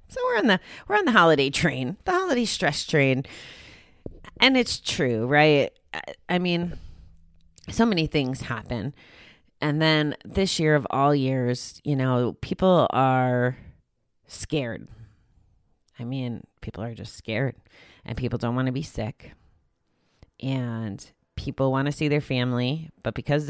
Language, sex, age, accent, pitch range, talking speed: English, female, 30-49, American, 120-165 Hz, 150 wpm